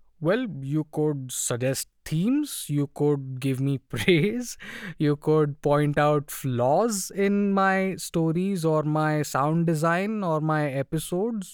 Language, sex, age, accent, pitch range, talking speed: English, male, 20-39, Indian, 135-170 Hz, 130 wpm